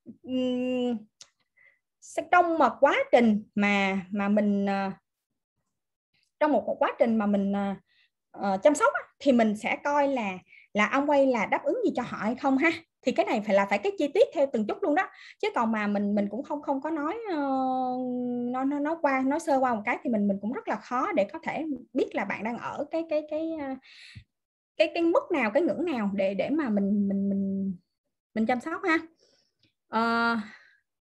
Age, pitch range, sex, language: 20-39, 215-300 Hz, female, Vietnamese